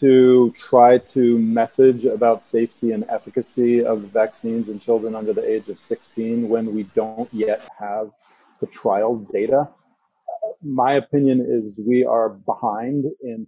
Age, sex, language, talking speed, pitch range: 40-59, male, English, 145 wpm, 115-145 Hz